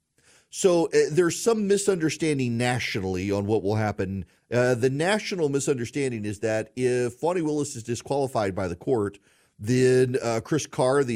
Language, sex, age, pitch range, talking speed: English, male, 40-59, 100-140 Hz, 155 wpm